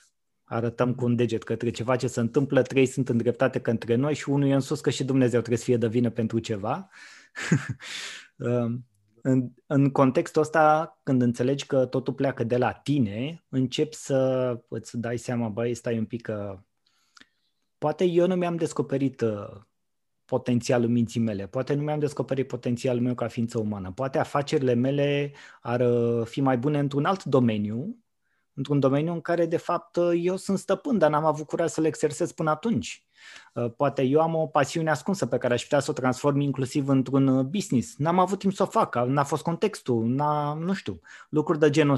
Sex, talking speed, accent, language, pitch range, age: male, 180 wpm, native, Romanian, 120-155 Hz, 20-39